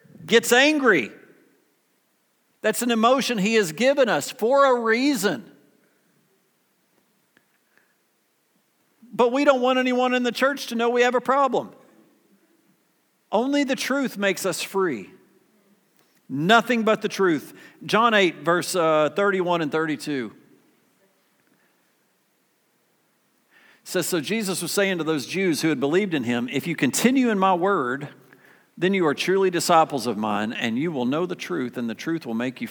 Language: English